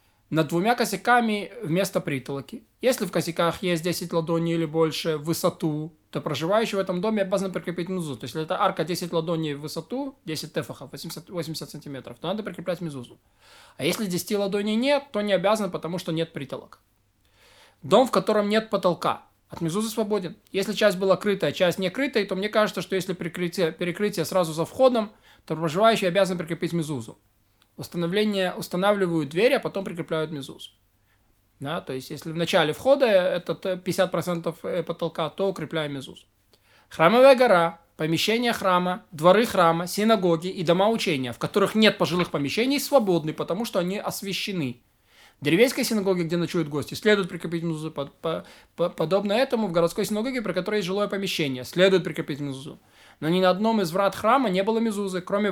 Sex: male